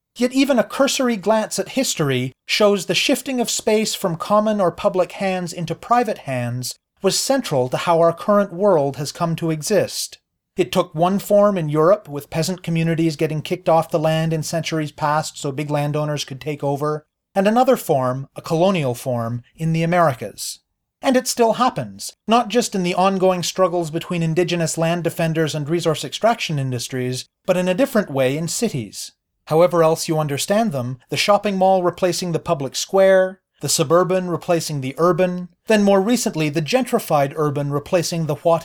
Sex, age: male, 30-49